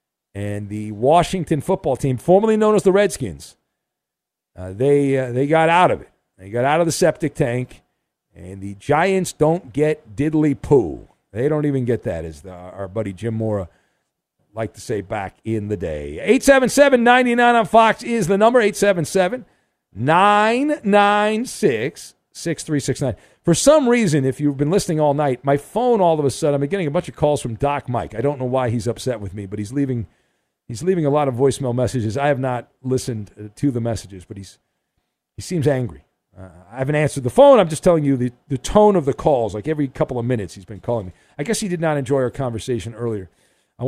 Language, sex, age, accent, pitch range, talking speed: English, male, 50-69, American, 120-200 Hz, 205 wpm